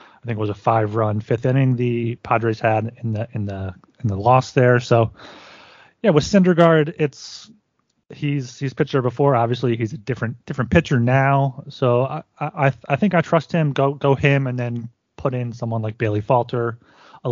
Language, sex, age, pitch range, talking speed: English, male, 30-49, 110-135 Hz, 190 wpm